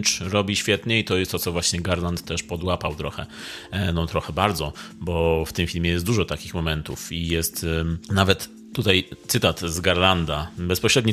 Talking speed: 165 wpm